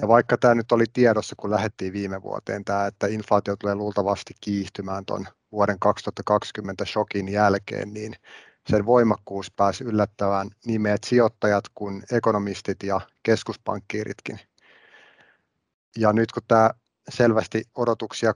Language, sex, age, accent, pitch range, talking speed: Finnish, male, 30-49, native, 100-115 Hz, 125 wpm